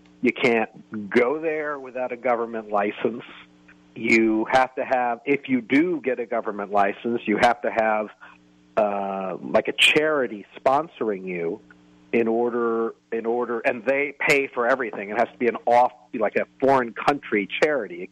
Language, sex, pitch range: English, male, 105-130 Hz